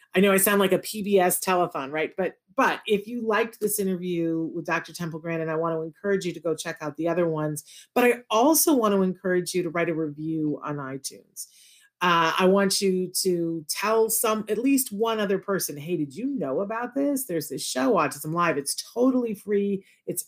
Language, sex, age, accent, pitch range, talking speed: English, female, 40-59, American, 165-200 Hz, 215 wpm